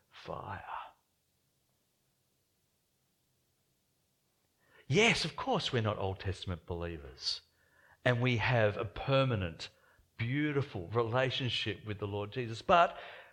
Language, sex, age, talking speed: English, male, 50-69, 95 wpm